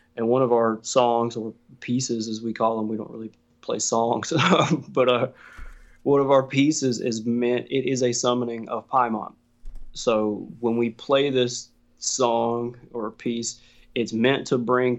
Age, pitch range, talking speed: 20-39, 115-130 Hz, 170 wpm